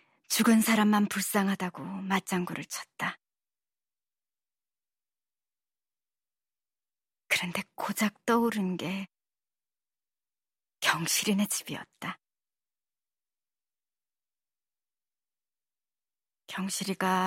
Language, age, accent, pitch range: Korean, 40-59, native, 180-215 Hz